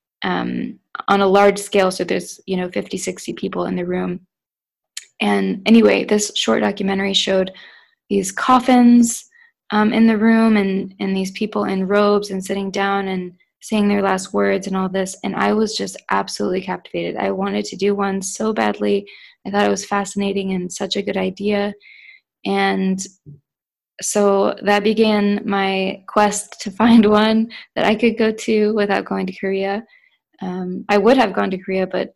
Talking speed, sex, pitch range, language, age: 175 wpm, female, 190-215 Hz, English, 20-39